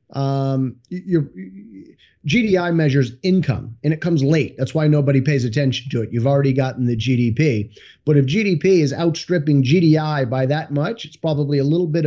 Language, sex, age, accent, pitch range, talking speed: English, male, 30-49, American, 130-165 Hz, 175 wpm